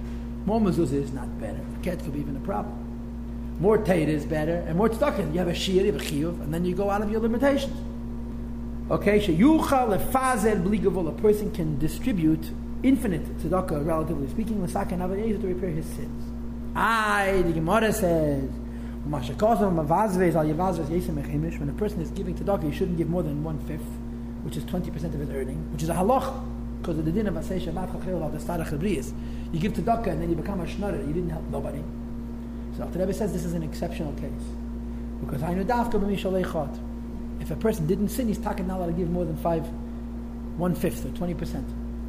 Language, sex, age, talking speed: English, male, 30-49, 185 wpm